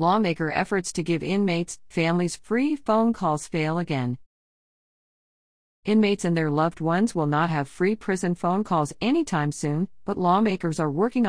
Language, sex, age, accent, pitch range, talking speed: English, female, 40-59, American, 145-185 Hz, 155 wpm